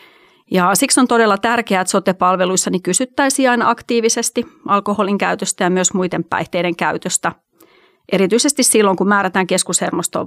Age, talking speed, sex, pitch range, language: 30-49, 130 wpm, female, 180-225 Hz, Finnish